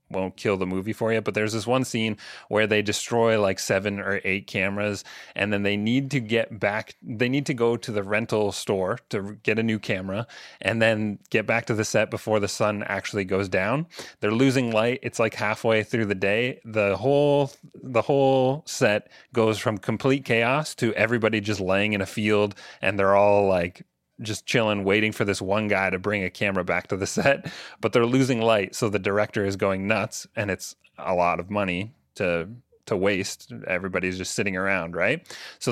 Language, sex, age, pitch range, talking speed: English, male, 30-49, 100-120 Hz, 205 wpm